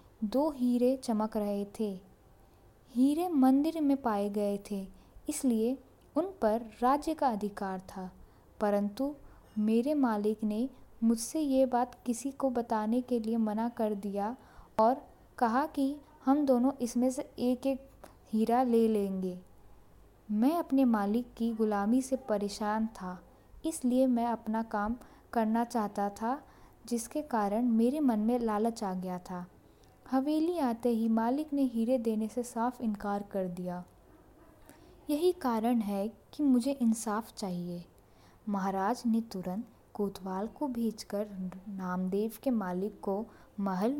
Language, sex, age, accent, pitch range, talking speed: Hindi, female, 20-39, native, 200-250 Hz, 135 wpm